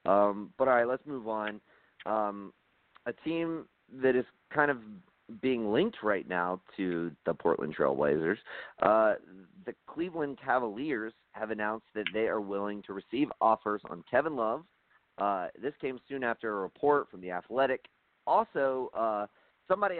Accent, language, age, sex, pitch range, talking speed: American, English, 30-49, male, 100-135 Hz, 155 wpm